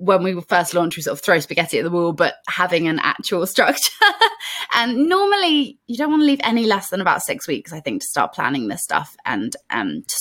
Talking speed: 240 wpm